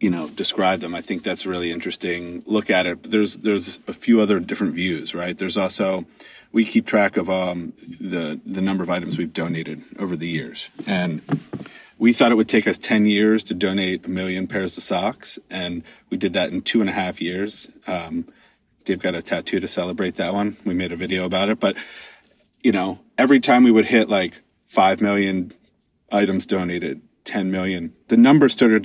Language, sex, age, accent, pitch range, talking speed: English, male, 30-49, American, 95-115 Hz, 200 wpm